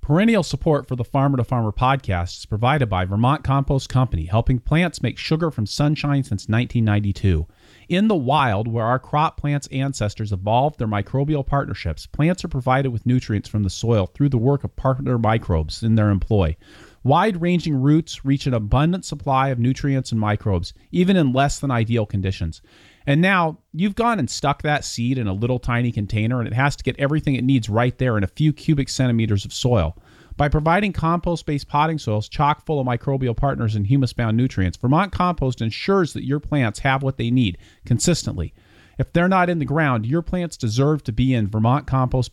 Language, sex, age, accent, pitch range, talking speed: English, male, 40-59, American, 110-145 Hz, 190 wpm